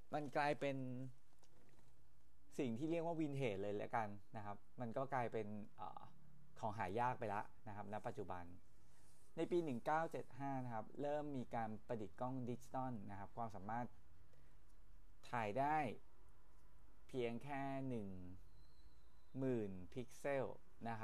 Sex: male